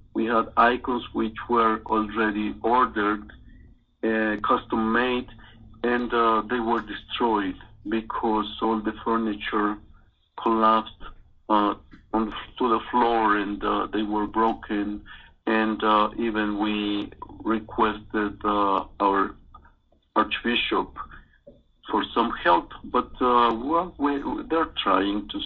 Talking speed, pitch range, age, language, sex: 105 wpm, 100-115 Hz, 50-69, English, male